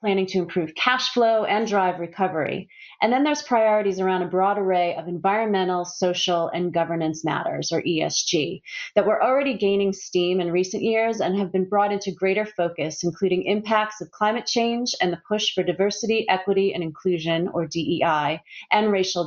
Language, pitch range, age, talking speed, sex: English, 170-210 Hz, 30-49, 175 wpm, female